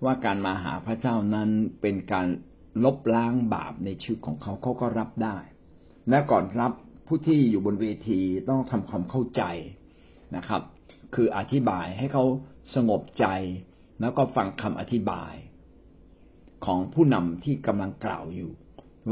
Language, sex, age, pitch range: Thai, male, 60-79, 95-130 Hz